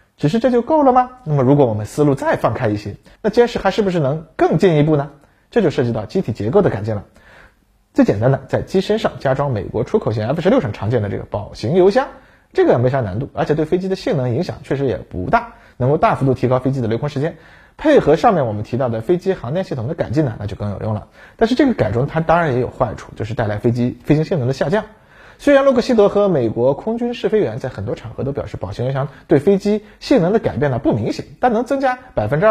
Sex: male